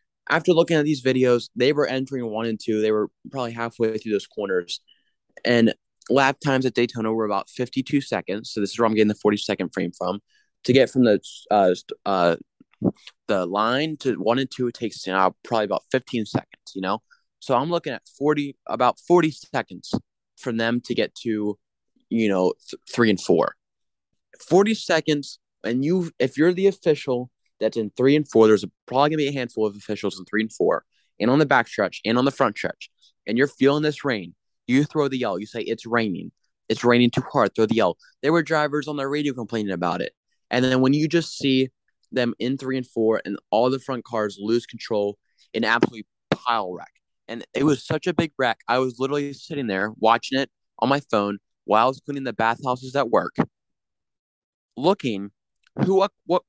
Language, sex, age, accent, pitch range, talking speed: English, male, 20-39, American, 110-140 Hz, 205 wpm